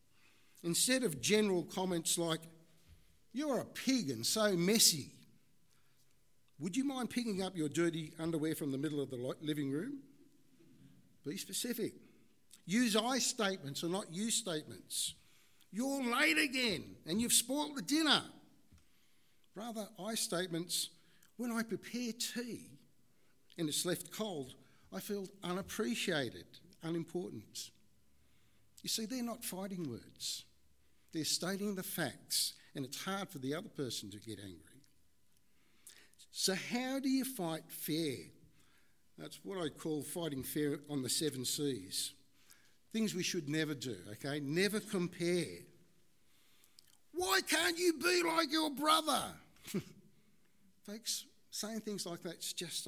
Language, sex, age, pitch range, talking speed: English, male, 60-79, 150-225 Hz, 130 wpm